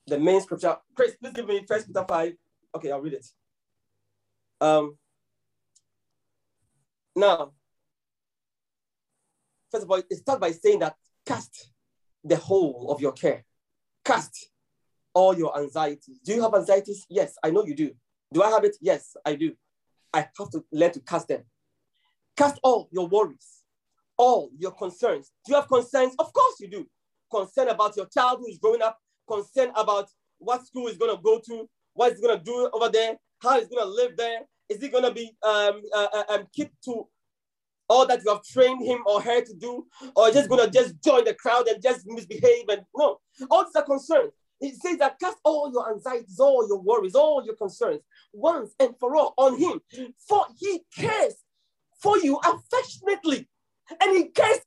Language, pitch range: English, 205-305 Hz